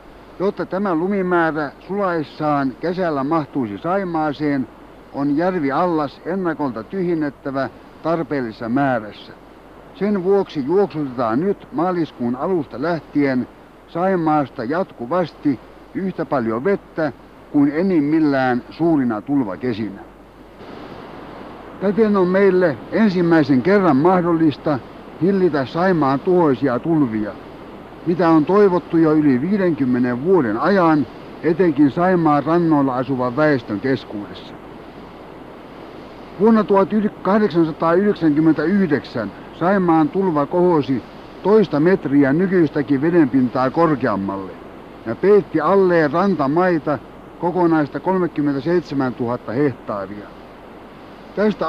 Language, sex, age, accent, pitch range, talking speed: Finnish, male, 60-79, native, 140-185 Hz, 85 wpm